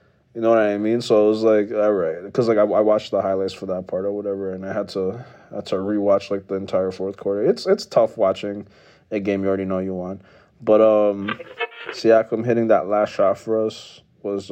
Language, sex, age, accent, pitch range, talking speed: English, male, 30-49, American, 105-125 Hz, 225 wpm